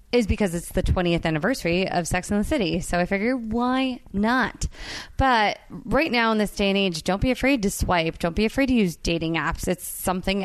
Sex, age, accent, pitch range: female, 20-39, American, 175-225 Hz